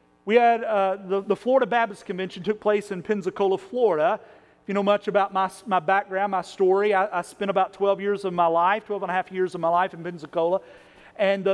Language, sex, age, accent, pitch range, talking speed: English, male, 40-59, American, 190-225 Hz, 230 wpm